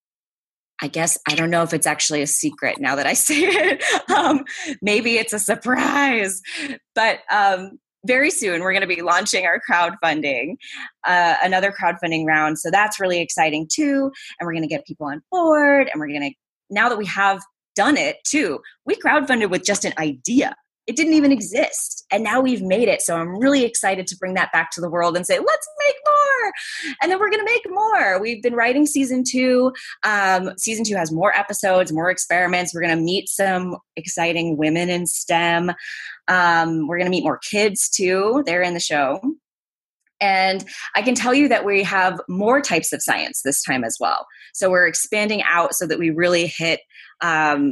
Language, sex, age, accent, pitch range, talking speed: English, female, 20-39, American, 170-255 Hz, 195 wpm